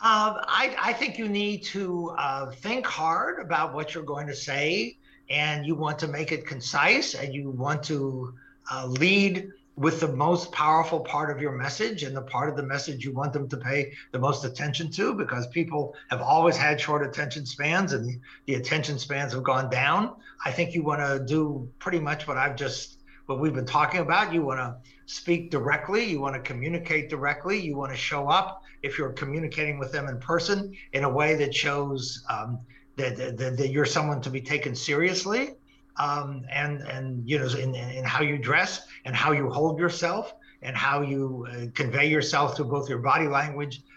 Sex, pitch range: male, 135-155 Hz